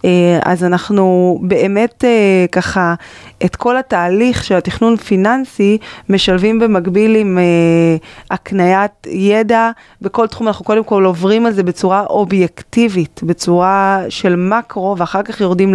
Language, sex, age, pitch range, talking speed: Hebrew, female, 20-39, 180-230 Hz, 130 wpm